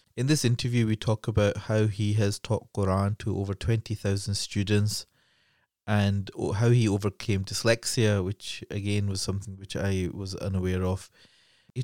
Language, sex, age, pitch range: English, male, 20-39, 95-110 Hz